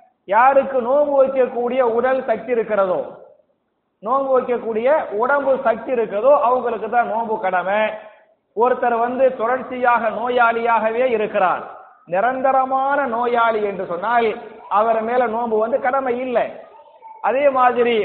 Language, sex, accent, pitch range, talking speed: English, male, Indian, 220-265 Hz, 115 wpm